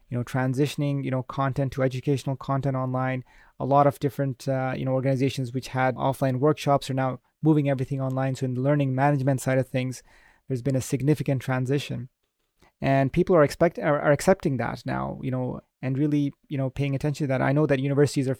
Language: English